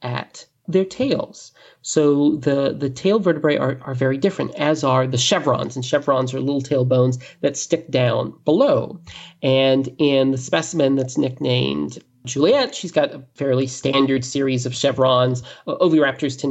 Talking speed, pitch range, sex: 155 wpm, 130-170 Hz, male